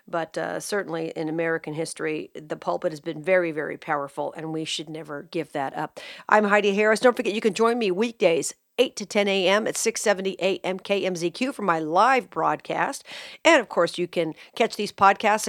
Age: 50-69